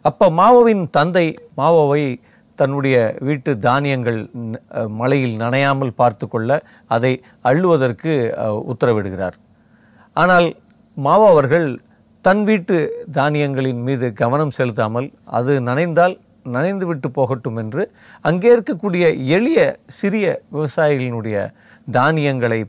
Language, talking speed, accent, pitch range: Tamil, 85 wpm, native, 125-170 Hz